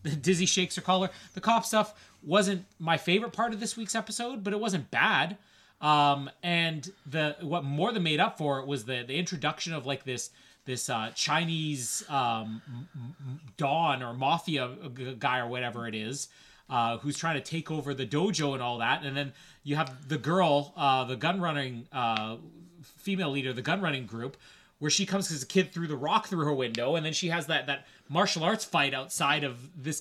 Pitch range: 140-185 Hz